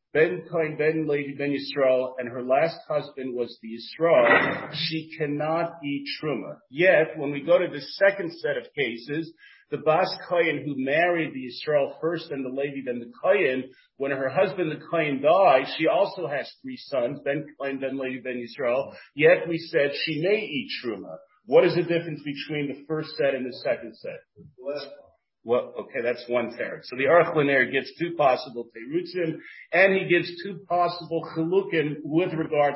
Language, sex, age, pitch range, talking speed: English, male, 40-59, 130-170 Hz, 180 wpm